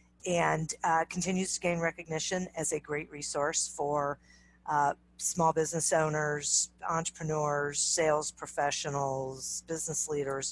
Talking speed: 115 wpm